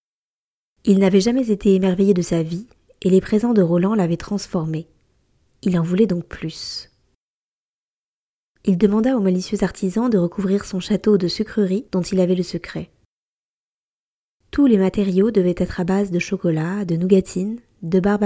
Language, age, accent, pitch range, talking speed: French, 20-39, French, 180-210 Hz, 160 wpm